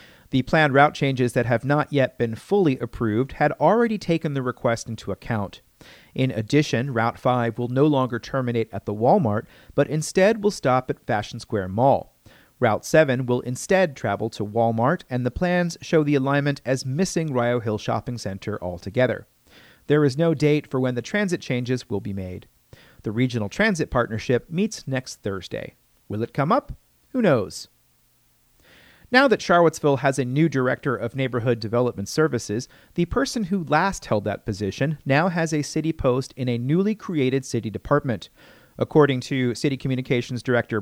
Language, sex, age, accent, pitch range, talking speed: English, male, 40-59, American, 120-150 Hz, 170 wpm